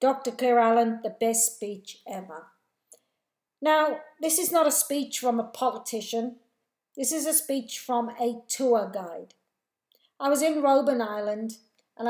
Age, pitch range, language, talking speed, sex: 50-69, 210-260 Hz, English, 150 wpm, female